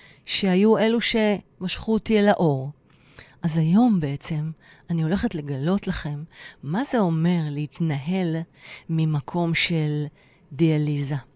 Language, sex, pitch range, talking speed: Hebrew, female, 145-180 Hz, 105 wpm